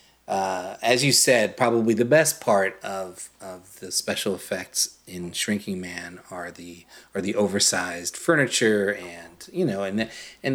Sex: male